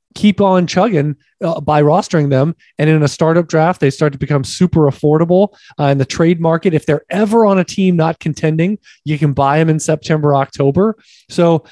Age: 20-39